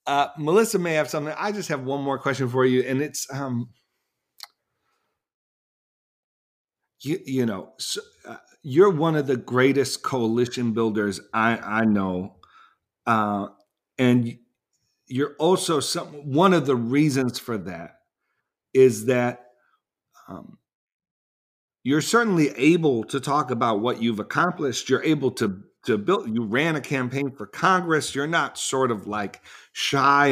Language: English